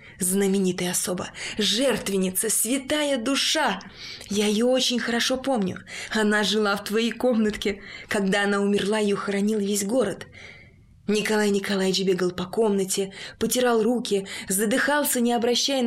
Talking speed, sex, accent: 120 wpm, female, native